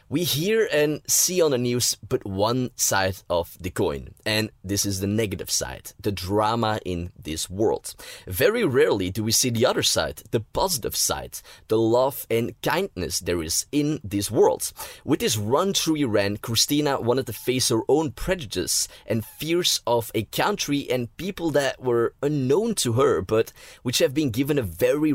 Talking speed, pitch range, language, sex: 180 wpm, 100-140 Hz, English, male